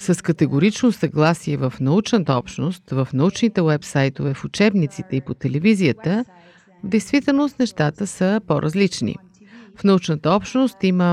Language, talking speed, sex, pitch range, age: Bulgarian, 120 wpm, female, 160-210 Hz, 50-69